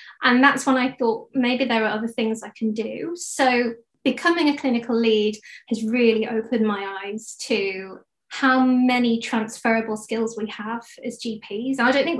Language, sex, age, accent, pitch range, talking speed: English, female, 20-39, British, 225-260 Hz, 170 wpm